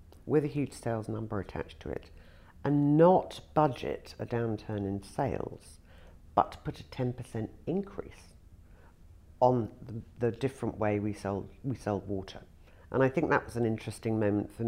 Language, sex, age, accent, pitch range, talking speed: English, female, 50-69, British, 95-130 Hz, 160 wpm